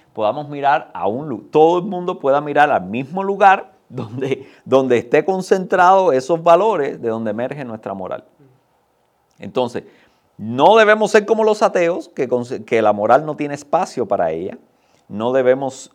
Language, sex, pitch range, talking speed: Spanish, male, 110-175 Hz, 155 wpm